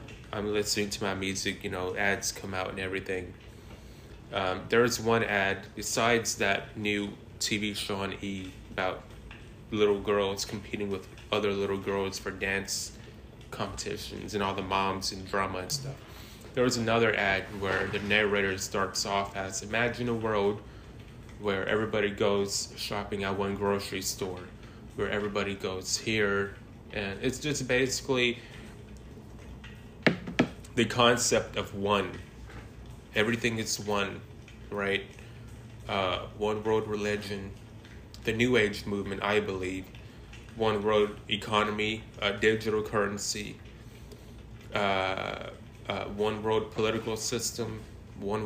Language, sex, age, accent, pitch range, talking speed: English, male, 20-39, American, 100-115 Hz, 125 wpm